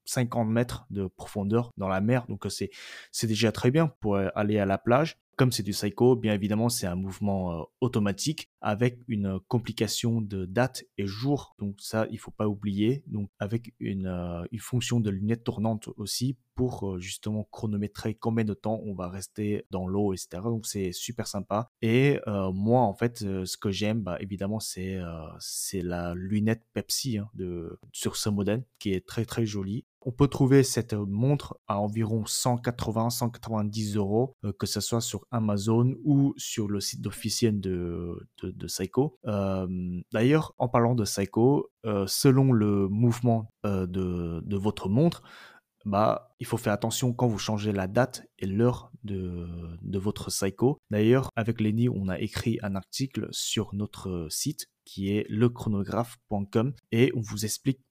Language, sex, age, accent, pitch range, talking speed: French, male, 20-39, French, 100-120 Hz, 175 wpm